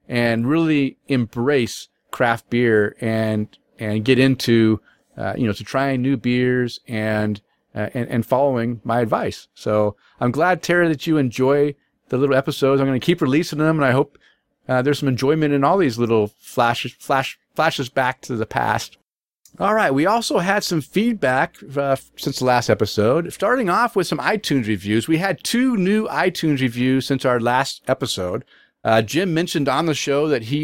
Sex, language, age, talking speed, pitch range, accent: male, English, 40-59, 180 wpm, 120-155 Hz, American